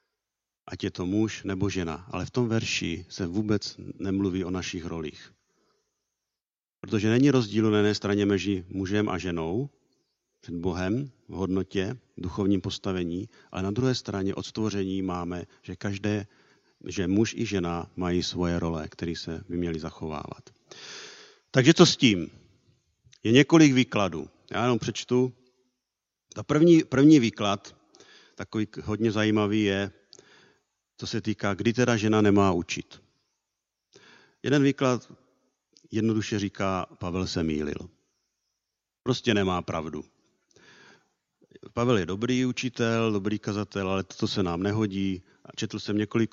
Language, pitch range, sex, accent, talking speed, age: Czech, 90-115 Hz, male, native, 135 wpm, 50-69